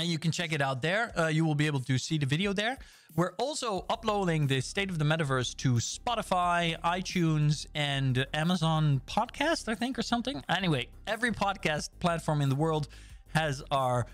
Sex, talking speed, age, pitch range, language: male, 185 wpm, 20-39, 135-170 Hz, English